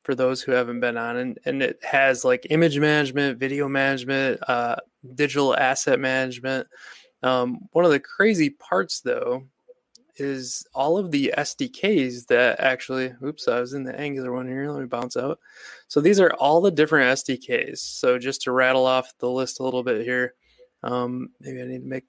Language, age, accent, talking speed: English, 20-39, American, 185 wpm